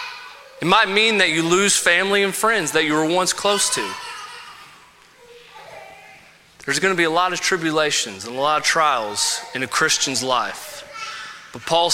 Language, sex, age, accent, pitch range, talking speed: English, male, 30-49, American, 145-220 Hz, 165 wpm